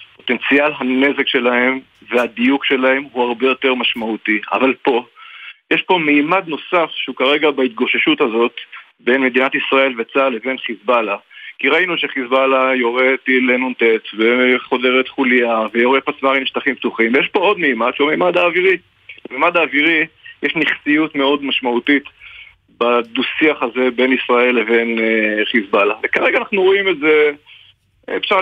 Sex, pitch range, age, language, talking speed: male, 120-150 Hz, 50-69, Hebrew, 135 wpm